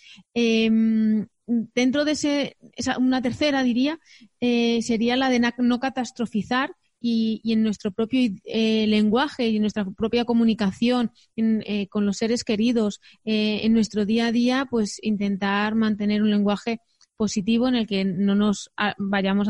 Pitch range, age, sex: 205-240 Hz, 20-39, female